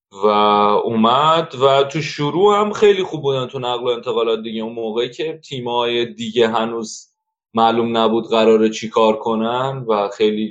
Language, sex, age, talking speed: Persian, male, 30-49, 160 wpm